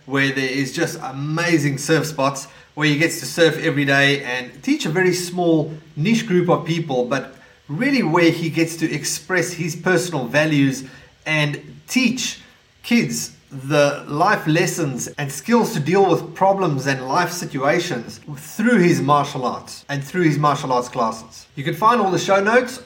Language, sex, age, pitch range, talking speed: English, male, 30-49, 140-180 Hz, 170 wpm